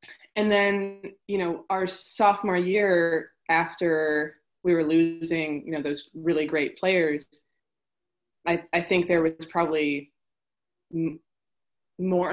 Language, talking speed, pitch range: English, 115 wpm, 150-180 Hz